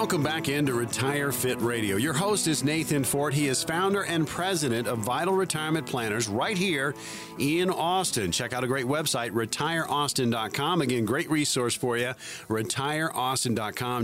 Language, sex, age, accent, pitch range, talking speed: English, male, 40-59, American, 115-150 Hz, 155 wpm